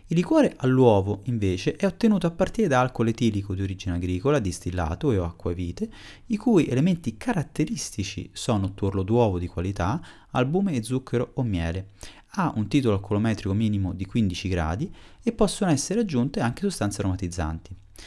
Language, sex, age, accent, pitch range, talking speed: Italian, male, 30-49, native, 100-160 Hz, 155 wpm